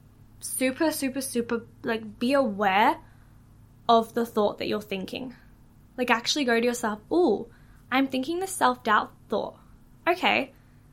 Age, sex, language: 10-29, female, English